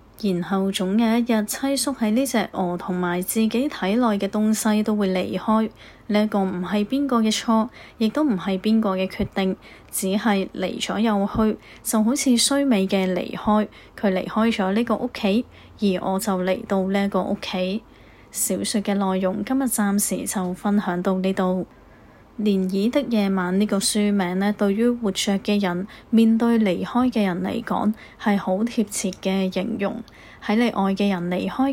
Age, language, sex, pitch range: 20-39, Chinese, female, 195-225 Hz